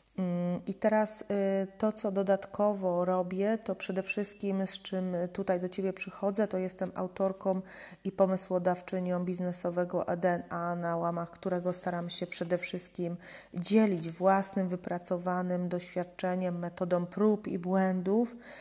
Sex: female